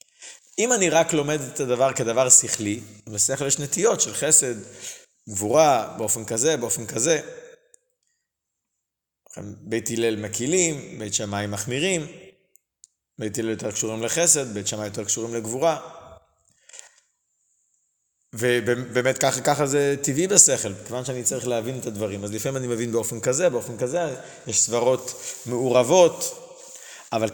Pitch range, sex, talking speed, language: 115-160 Hz, male, 125 wpm, Hebrew